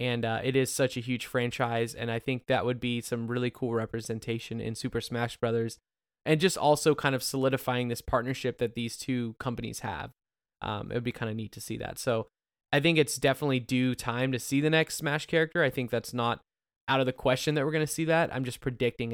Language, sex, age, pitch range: English, male, 20-39, 115-135 Hz